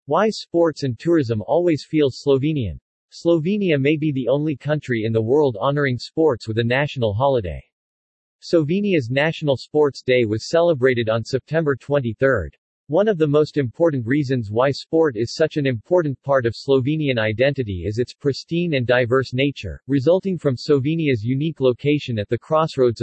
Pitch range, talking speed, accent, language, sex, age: 120-150 Hz, 160 wpm, American, English, male, 40-59